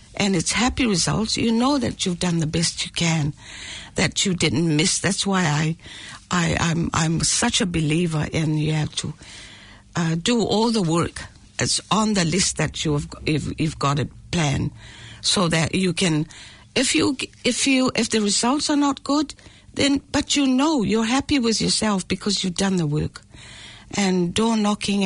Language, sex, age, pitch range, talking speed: English, female, 60-79, 150-210 Hz, 180 wpm